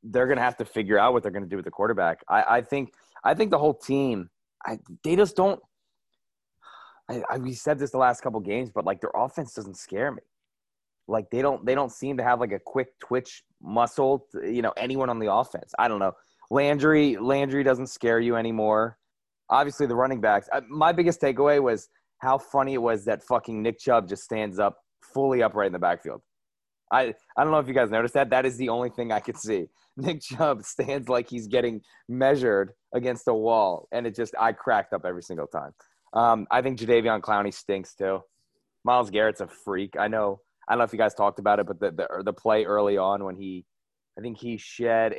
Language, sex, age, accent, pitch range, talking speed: English, male, 20-39, American, 100-130 Hz, 220 wpm